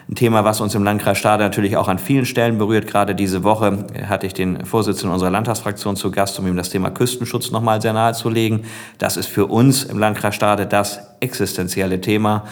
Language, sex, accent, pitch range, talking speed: German, male, German, 95-110 Hz, 200 wpm